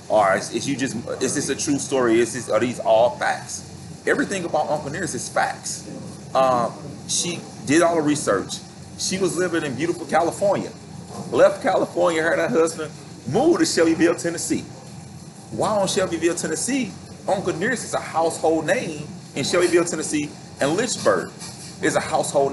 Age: 30-49